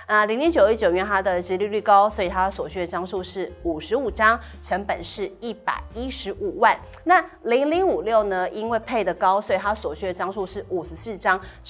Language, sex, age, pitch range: Chinese, female, 30-49, 190-300 Hz